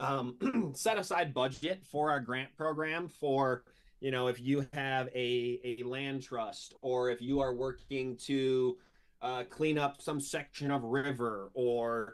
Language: English